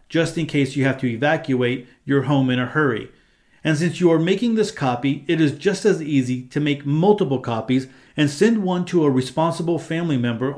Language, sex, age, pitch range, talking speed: English, male, 40-59, 130-170 Hz, 205 wpm